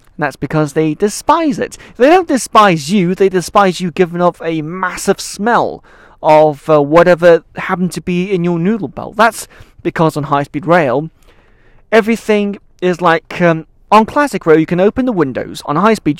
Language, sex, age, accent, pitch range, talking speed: English, male, 30-49, British, 145-185 Hz, 170 wpm